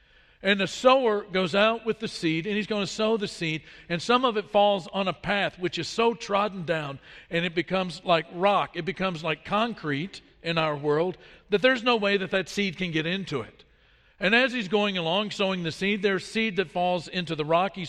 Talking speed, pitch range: 220 wpm, 170-210 Hz